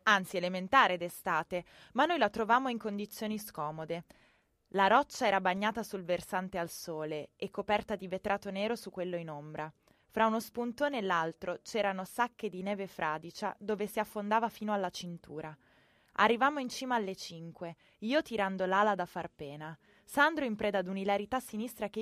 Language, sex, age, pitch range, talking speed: Italian, female, 20-39, 170-215 Hz, 165 wpm